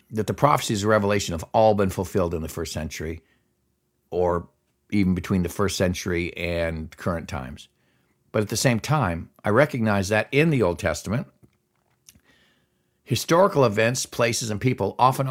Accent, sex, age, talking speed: American, male, 60-79, 155 wpm